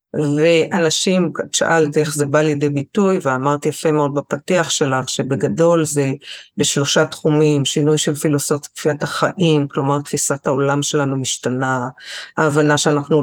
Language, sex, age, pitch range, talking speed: Hebrew, female, 50-69, 135-160 Hz, 125 wpm